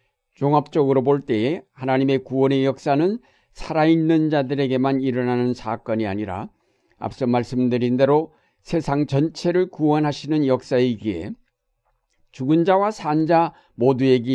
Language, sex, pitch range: Korean, male, 125-155 Hz